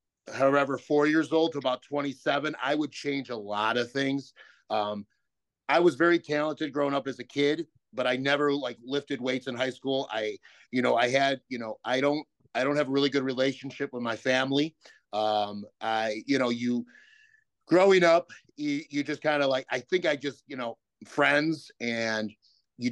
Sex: male